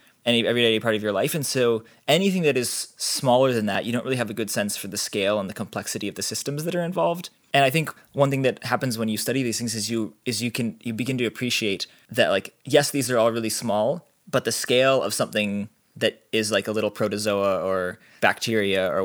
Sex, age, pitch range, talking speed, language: male, 20-39, 100-125 Hz, 240 wpm, English